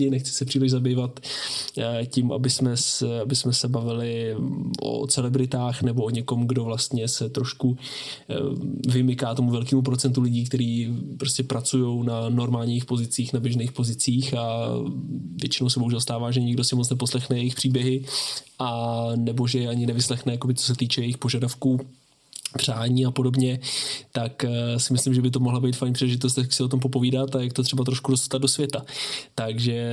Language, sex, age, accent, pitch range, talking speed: Czech, male, 20-39, native, 125-135 Hz, 160 wpm